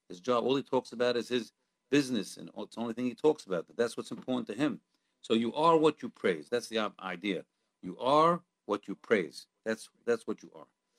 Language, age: English, 50-69